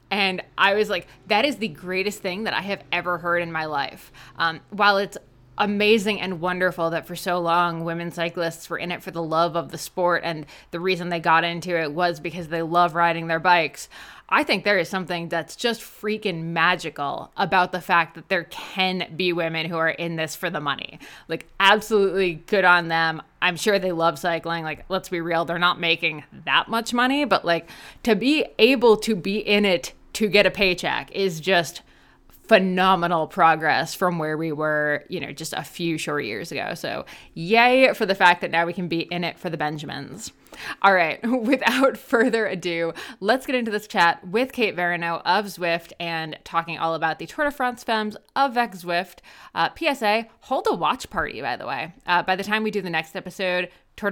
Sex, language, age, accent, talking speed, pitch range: female, English, 20-39, American, 205 wpm, 165-205 Hz